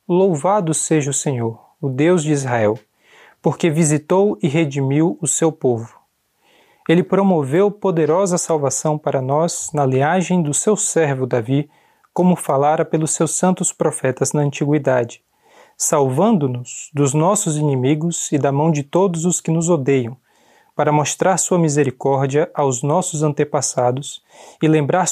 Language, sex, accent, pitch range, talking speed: Portuguese, male, Brazilian, 140-180 Hz, 135 wpm